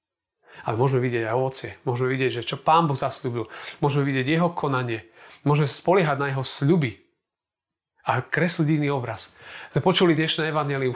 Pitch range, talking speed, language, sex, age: 135-180 Hz, 160 wpm, Slovak, male, 30-49